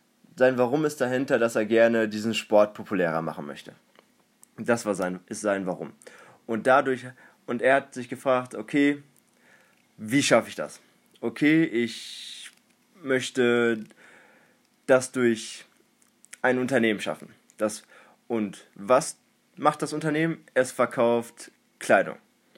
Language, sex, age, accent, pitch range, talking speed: German, male, 20-39, German, 110-140 Hz, 115 wpm